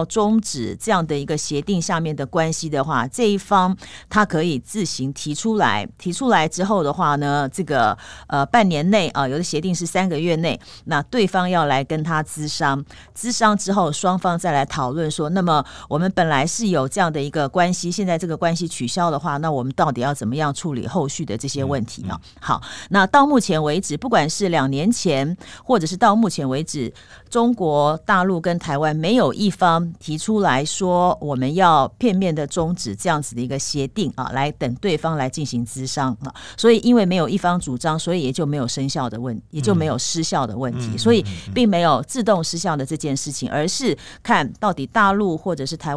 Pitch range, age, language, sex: 140-185 Hz, 50-69, Chinese, female